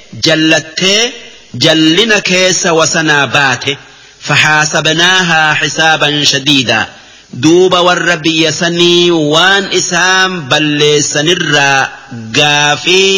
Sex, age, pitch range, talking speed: male, 50-69, 140-180 Hz, 70 wpm